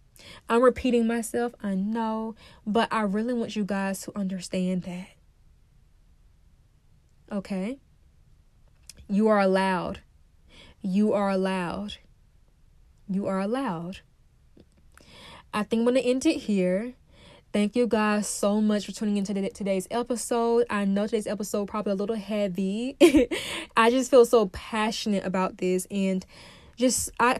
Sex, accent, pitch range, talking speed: female, American, 190-220 Hz, 130 wpm